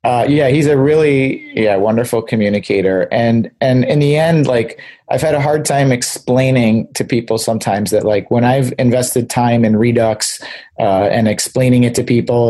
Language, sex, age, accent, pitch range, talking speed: English, male, 30-49, American, 110-140 Hz, 180 wpm